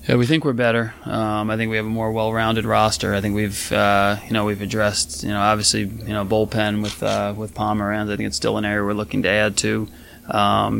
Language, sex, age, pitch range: English, male, 20-39, 100-110 Hz